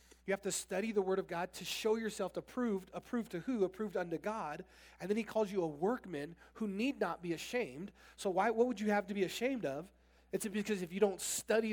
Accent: American